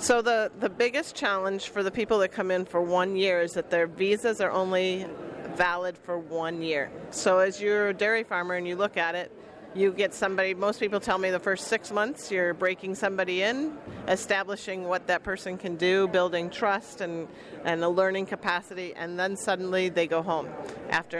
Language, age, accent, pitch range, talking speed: English, 40-59, American, 170-195 Hz, 200 wpm